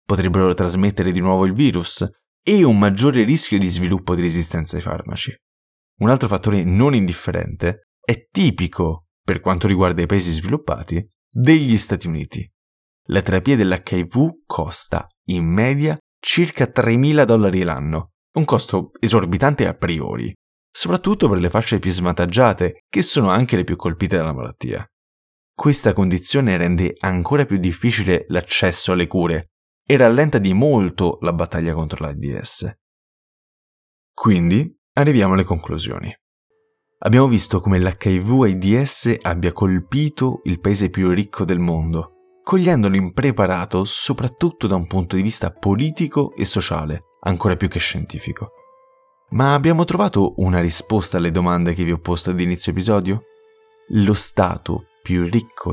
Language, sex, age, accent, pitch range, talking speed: Italian, male, 20-39, native, 90-120 Hz, 135 wpm